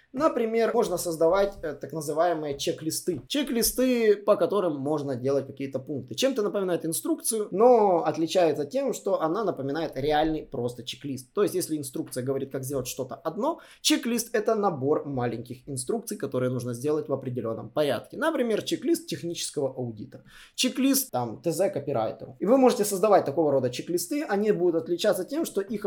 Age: 20-39